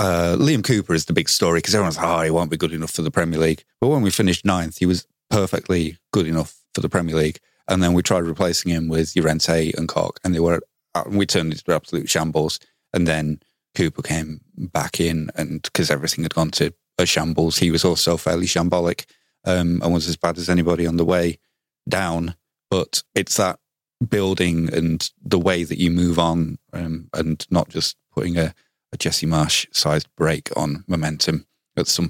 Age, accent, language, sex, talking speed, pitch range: 30-49, British, English, male, 200 wpm, 80-90 Hz